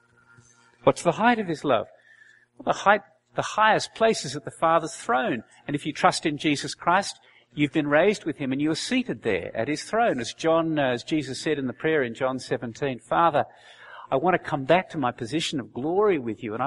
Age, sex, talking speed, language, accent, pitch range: 50-69, male, 225 wpm, English, Australian, 120-160 Hz